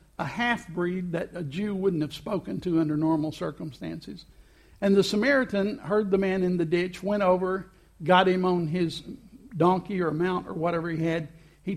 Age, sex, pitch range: 60-79, male, 165-195 Hz